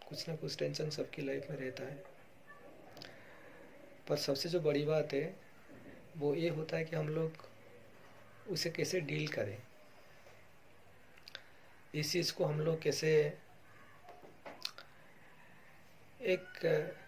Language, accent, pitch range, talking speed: Hindi, native, 150-175 Hz, 115 wpm